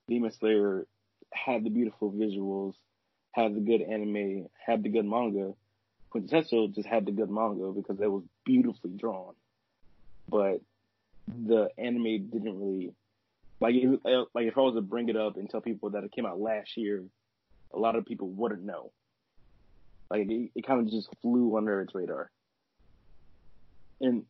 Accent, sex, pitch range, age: American, male, 100-115 Hz, 20-39